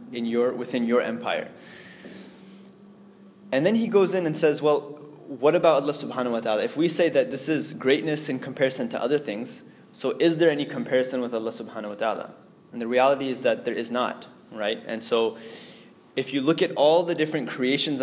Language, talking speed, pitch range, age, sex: English, 200 wpm, 125-150 Hz, 20-39, male